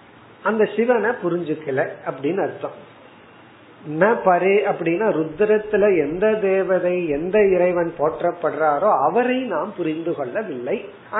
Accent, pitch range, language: native, 155-205 Hz, Tamil